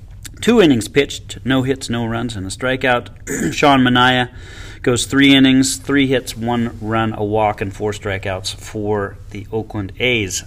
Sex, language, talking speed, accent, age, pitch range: male, English, 160 wpm, American, 30-49, 100-130 Hz